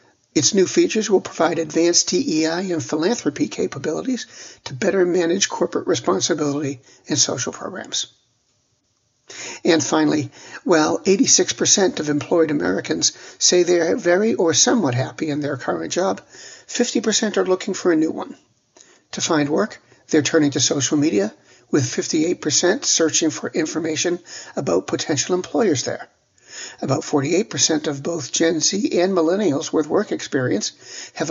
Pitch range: 150-185 Hz